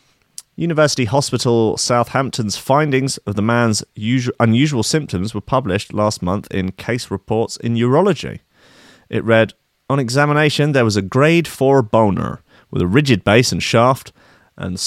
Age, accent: 30-49, British